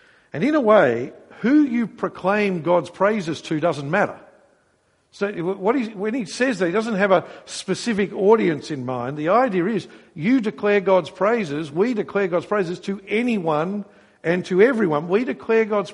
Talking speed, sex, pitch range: 175 wpm, male, 135-200 Hz